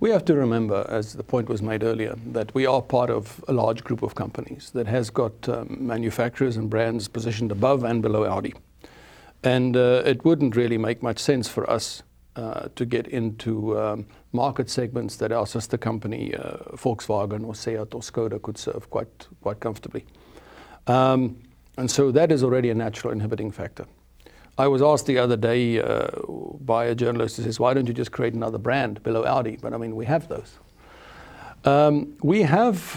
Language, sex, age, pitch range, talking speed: English, male, 60-79, 115-140 Hz, 190 wpm